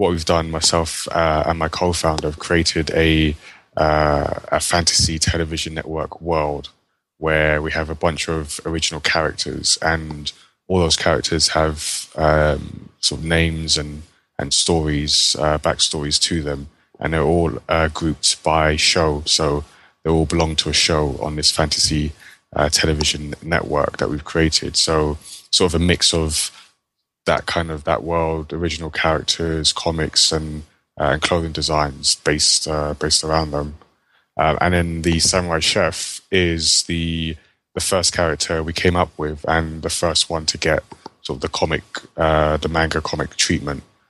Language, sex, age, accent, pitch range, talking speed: English, male, 20-39, British, 75-85 Hz, 160 wpm